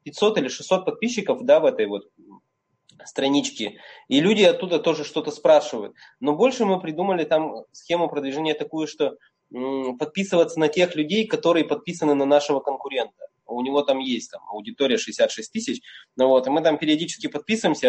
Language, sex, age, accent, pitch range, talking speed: Russian, male, 20-39, native, 135-205 Hz, 160 wpm